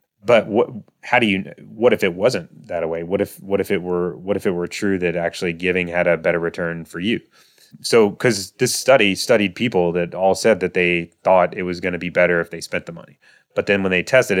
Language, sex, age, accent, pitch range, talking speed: English, male, 30-49, American, 90-110 Hz, 245 wpm